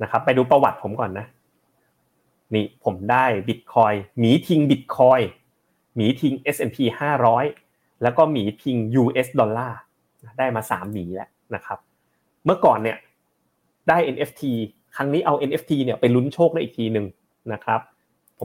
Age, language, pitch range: 30-49, Thai, 110-145 Hz